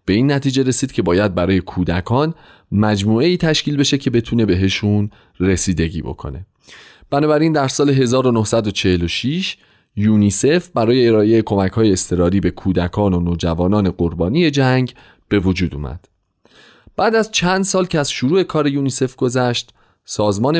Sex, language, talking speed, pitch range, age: male, Persian, 135 wpm, 95-140 Hz, 30-49